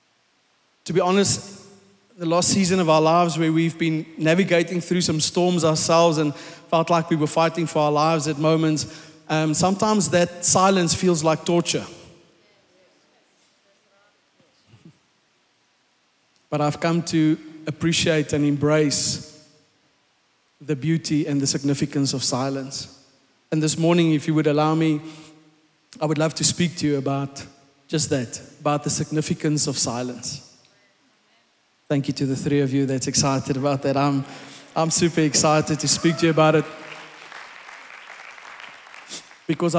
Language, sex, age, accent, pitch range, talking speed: English, male, 30-49, South African, 150-170 Hz, 140 wpm